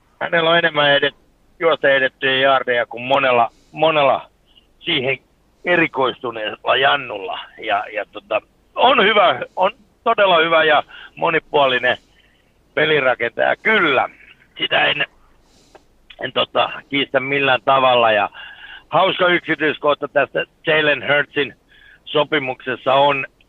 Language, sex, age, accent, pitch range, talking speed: Finnish, male, 60-79, native, 125-155 Hz, 100 wpm